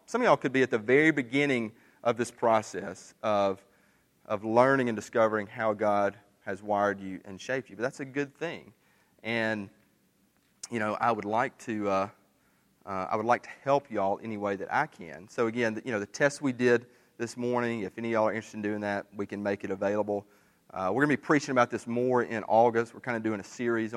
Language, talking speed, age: English, 230 wpm, 30-49